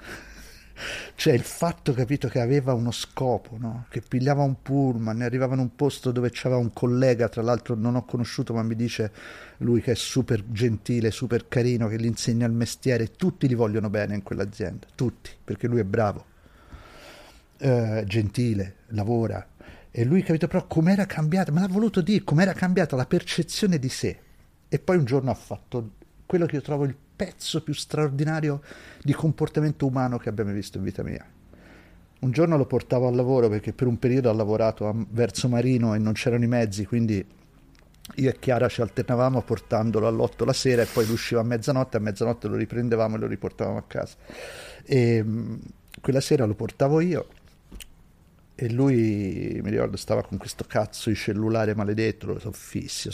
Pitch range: 110-135 Hz